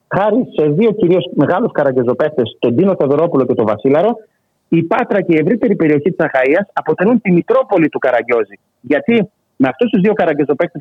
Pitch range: 155-225 Hz